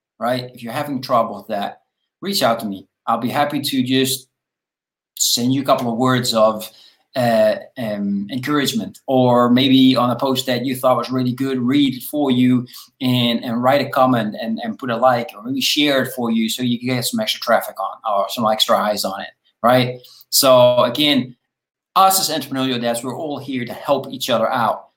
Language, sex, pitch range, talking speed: English, male, 115-140 Hz, 205 wpm